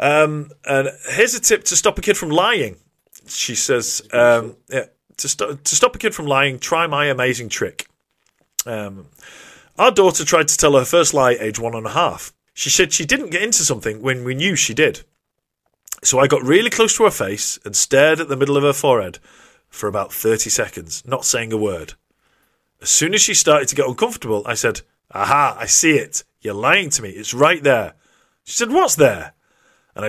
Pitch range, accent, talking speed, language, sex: 130-185 Hz, British, 205 wpm, English, male